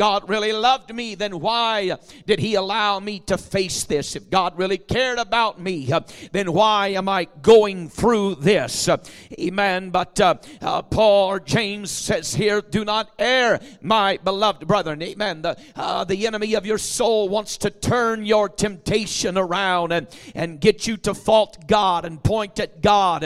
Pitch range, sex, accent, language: 180-215 Hz, male, American, English